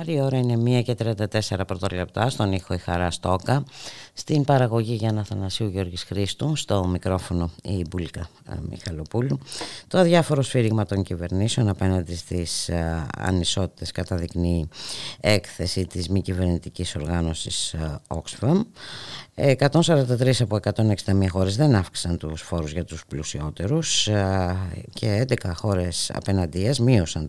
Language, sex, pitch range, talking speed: Greek, female, 85-115 Hz, 120 wpm